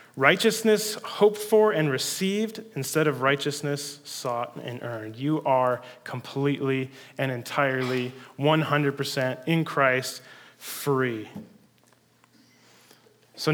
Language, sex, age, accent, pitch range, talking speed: English, male, 30-49, American, 130-160 Hz, 95 wpm